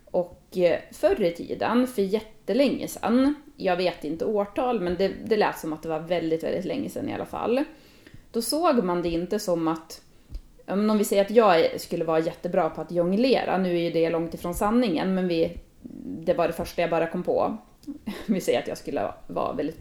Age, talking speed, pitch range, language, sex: 30-49, 210 wpm, 170-225 Hz, Swedish, female